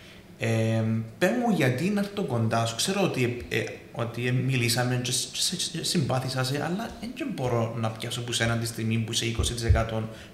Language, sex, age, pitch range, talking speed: Greek, male, 20-39, 110-140 Hz, 145 wpm